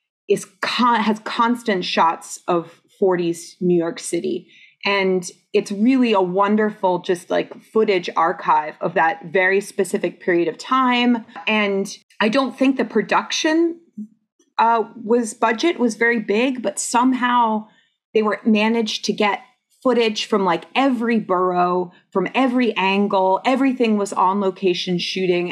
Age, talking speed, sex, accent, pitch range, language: 30-49, 135 wpm, female, American, 175-230 Hz, English